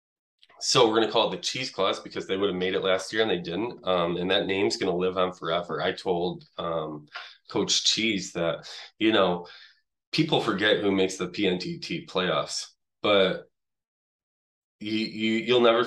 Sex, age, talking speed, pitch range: male, 20-39, 185 wpm, 90-105 Hz